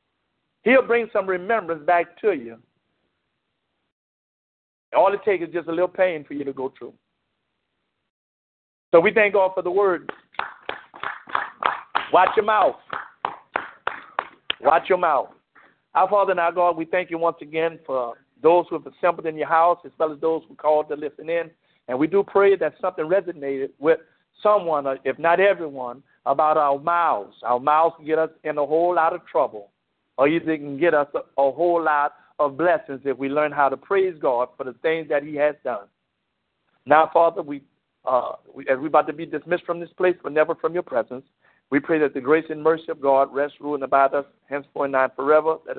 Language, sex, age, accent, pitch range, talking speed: English, male, 50-69, American, 140-175 Hz, 195 wpm